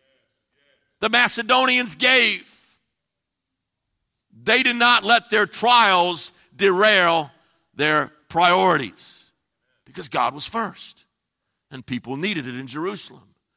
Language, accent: English, American